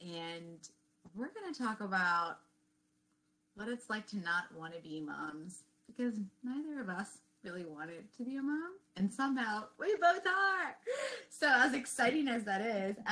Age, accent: 20-39, American